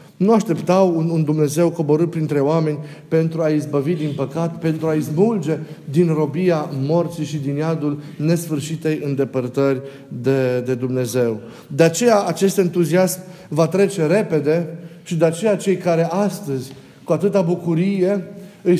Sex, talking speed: male, 140 wpm